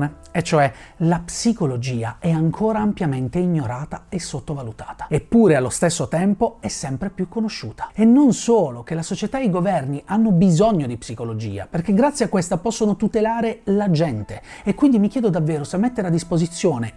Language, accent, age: Italian, native, 30-49